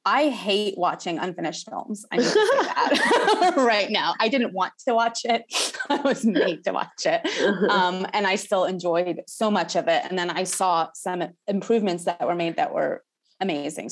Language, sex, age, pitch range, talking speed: English, female, 20-39, 175-225 Hz, 195 wpm